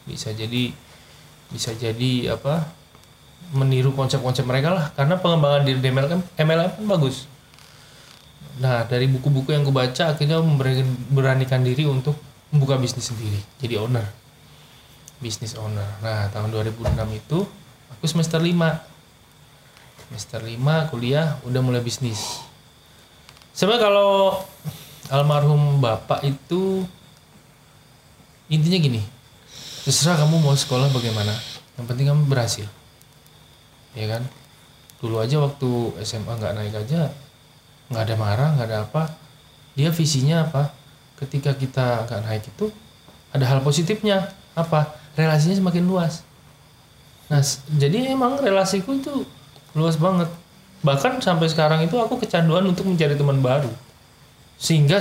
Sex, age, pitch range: male, 20-39, 125-160 Hz